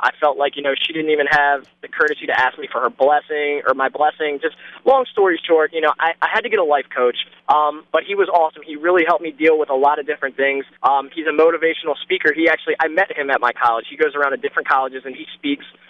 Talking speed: 270 wpm